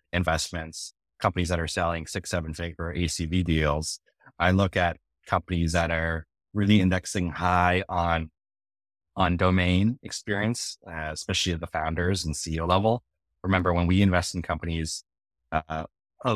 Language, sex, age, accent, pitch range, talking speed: English, male, 20-39, American, 80-95 Hz, 145 wpm